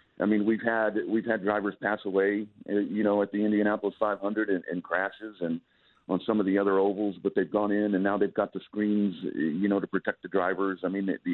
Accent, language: American, English